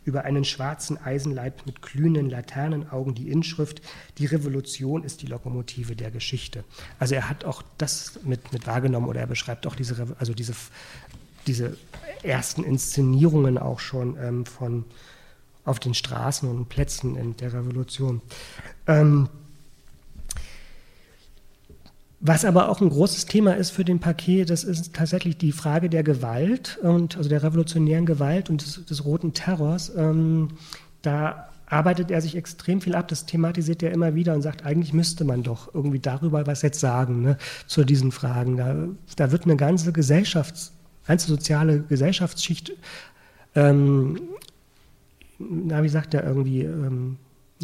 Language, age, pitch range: German, 40-59, 130-165 Hz